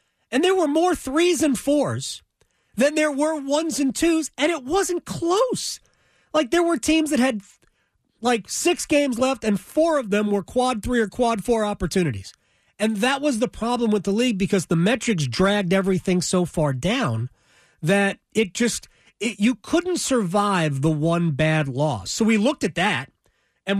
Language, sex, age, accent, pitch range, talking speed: English, male, 30-49, American, 170-255 Hz, 175 wpm